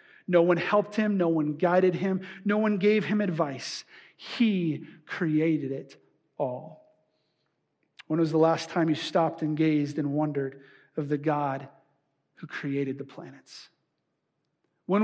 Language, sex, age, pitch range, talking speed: English, male, 40-59, 150-190 Hz, 145 wpm